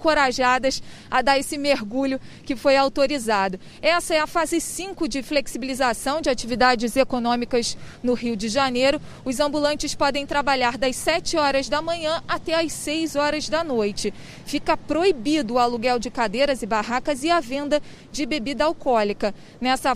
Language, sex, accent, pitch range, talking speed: Portuguese, female, Brazilian, 260-310 Hz, 155 wpm